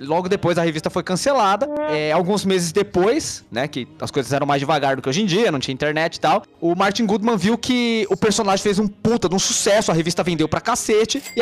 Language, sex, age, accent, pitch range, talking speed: Portuguese, male, 20-39, Brazilian, 155-205 Hz, 240 wpm